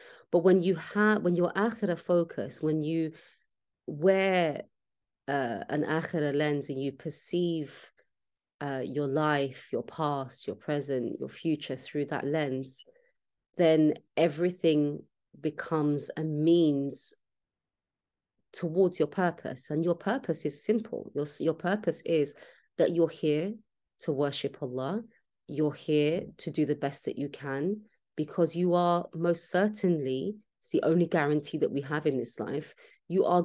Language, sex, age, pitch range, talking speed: English, female, 30-49, 150-175 Hz, 140 wpm